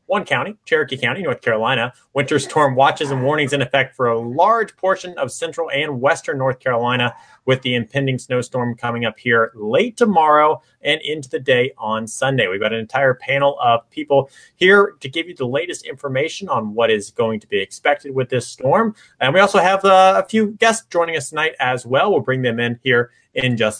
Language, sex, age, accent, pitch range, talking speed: English, male, 30-49, American, 125-165 Hz, 205 wpm